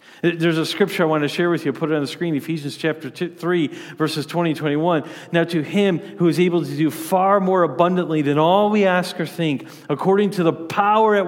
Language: English